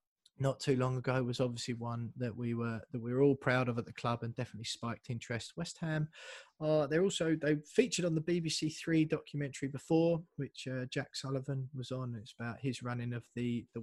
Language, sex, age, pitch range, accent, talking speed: English, male, 20-39, 125-155 Hz, British, 210 wpm